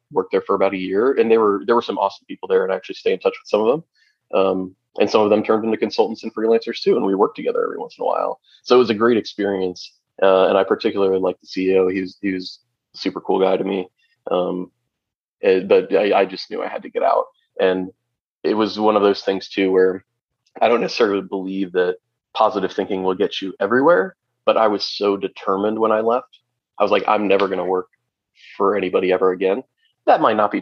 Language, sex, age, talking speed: English, male, 20-39, 245 wpm